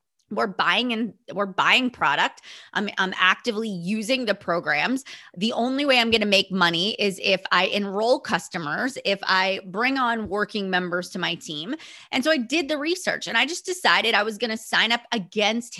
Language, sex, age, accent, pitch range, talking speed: English, female, 30-49, American, 195-265 Hz, 185 wpm